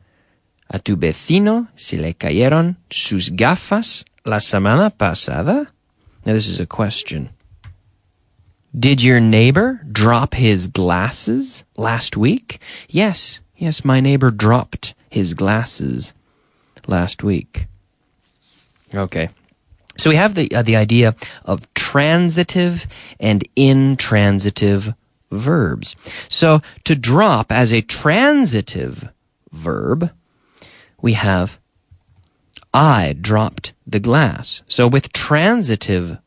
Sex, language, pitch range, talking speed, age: male, English, 95-135 Hz, 105 wpm, 30-49